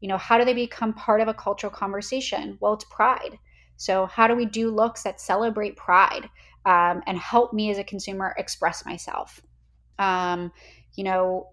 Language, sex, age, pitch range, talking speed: English, female, 20-39, 180-205 Hz, 180 wpm